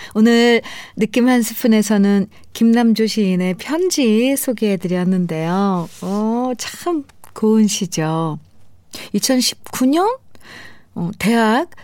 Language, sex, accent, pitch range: Korean, female, native, 170-230 Hz